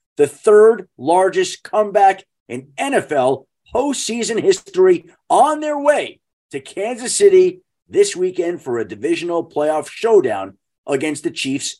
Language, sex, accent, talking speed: English, male, American, 120 wpm